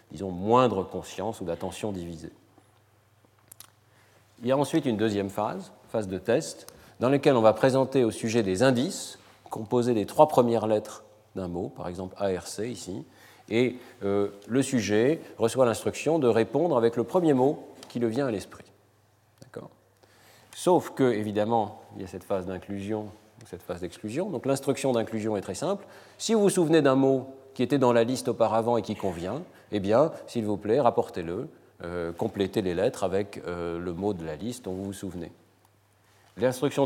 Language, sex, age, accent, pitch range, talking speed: French, male, 40-59, French, 100-130 Hz, 180 wpm